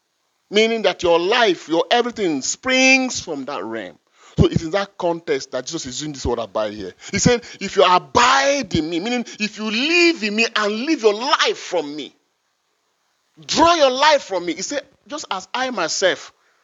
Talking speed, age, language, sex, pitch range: 190 wpm, 30-49, English, male, 170-245 Hz